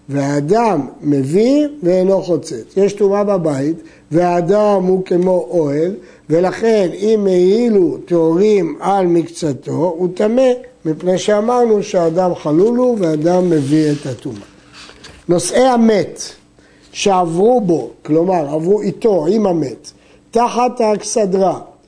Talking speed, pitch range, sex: 105 wpm, 170-220 Hz, male